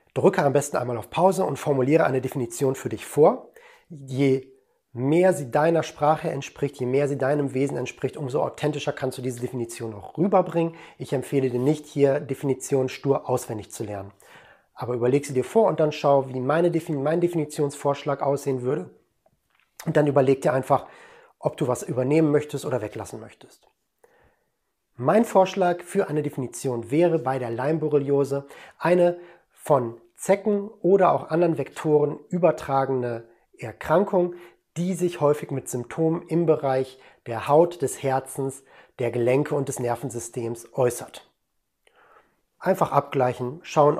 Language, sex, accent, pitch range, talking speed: German, male, German, 130-170 Hz, 145 wpm